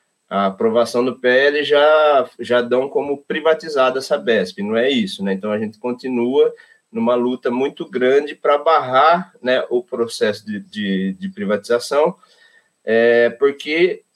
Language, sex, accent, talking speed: Portuguese, male, Brazilian, 135 wpm